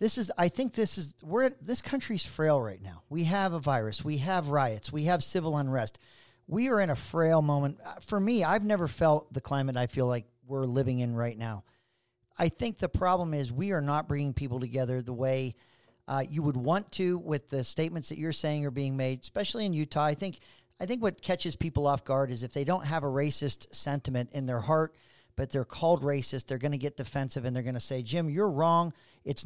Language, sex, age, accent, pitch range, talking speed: English, male, 40-59, American, 135-180 Hz, 225 wpm